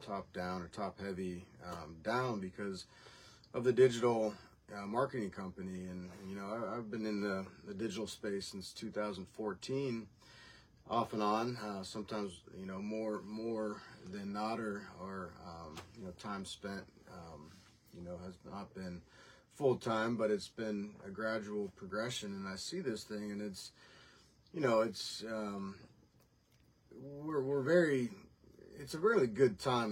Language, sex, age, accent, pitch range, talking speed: English, male, 40-59, American, 100-120 Hz, 150 wpm